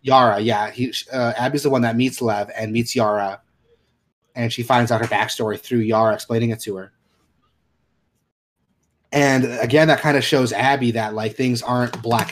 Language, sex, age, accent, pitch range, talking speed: English, male, 30-49, American, 110-130 Hz, 180 wpm